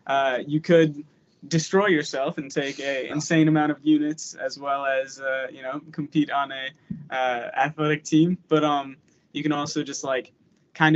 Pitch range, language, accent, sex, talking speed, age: 140-160 Hz, English, American, male, 175 wpm, 10-29